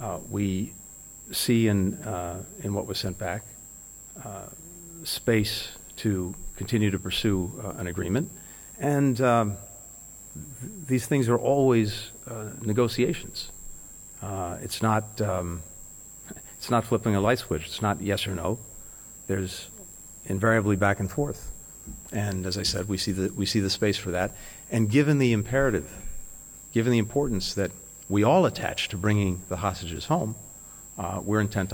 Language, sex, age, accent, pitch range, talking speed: English, male, 50-69, American, 95-115 Hz, 150 wpm